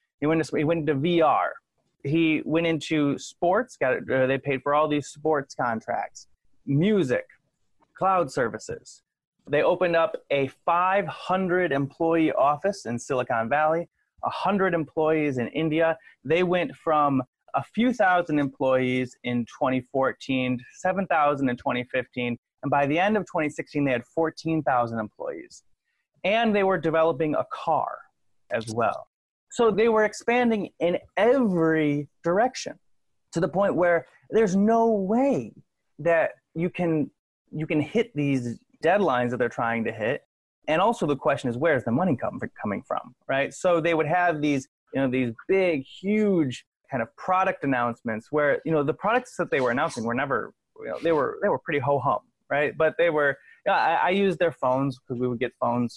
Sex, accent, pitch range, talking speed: male, American, 130-180 Hz, 170 wpm